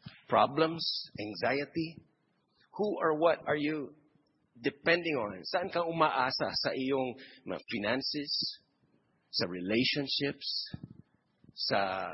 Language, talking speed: English, 90 wpm